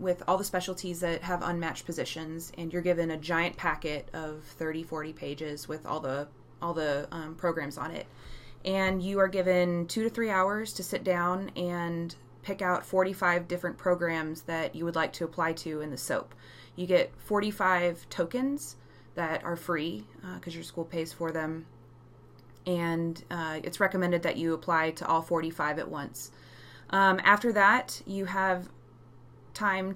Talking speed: 170 wpm